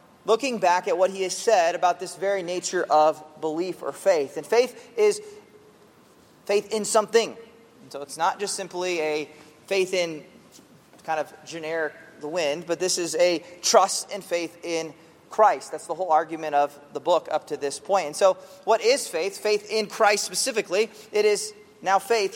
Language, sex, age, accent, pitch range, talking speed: English, male, 30-49, American, 160-210 Hz, 180 wpm